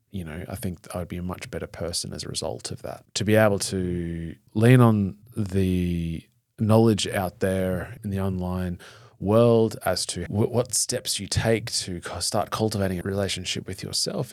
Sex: male